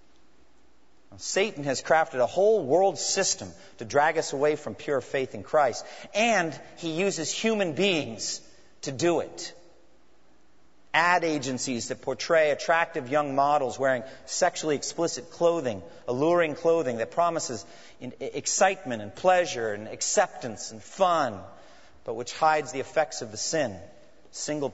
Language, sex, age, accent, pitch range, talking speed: English, male, 40-59, American, 130-195 Hz, 135 wpm